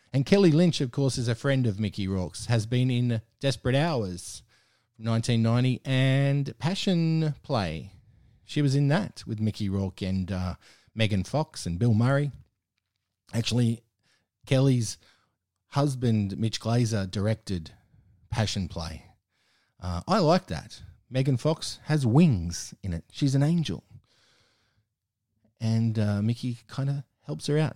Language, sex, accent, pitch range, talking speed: English, male, Australian, 100-135 Hz, 135 wpm